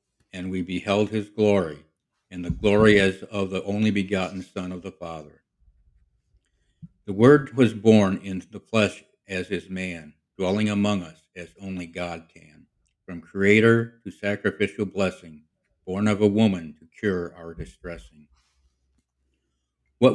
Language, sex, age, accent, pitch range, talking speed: English, male, 60-79, American, 80-100 Hz, 145 wpm